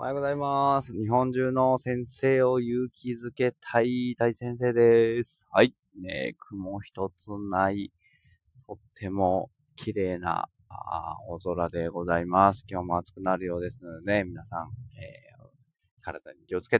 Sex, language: male, Japanese